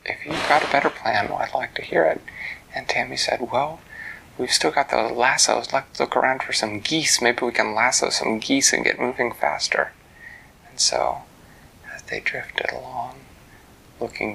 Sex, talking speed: male, 180 wpm